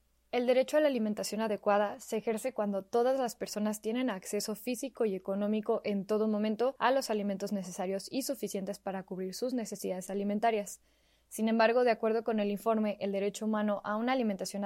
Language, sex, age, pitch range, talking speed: Spanish, female, 10-29, 195-225 Hz, 180 wpm